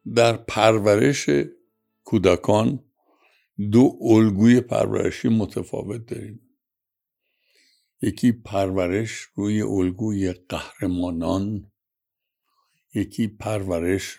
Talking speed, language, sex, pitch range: 65 wpm, Persian, male, 100-135 Hz